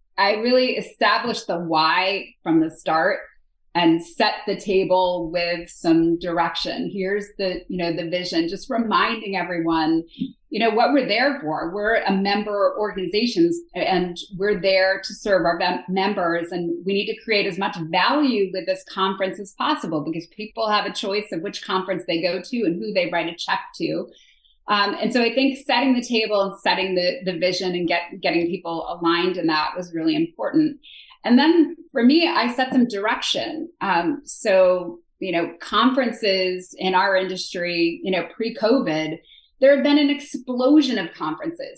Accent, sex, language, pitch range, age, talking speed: American, female, English, 180-250 Hz, 30-49, 175 wpm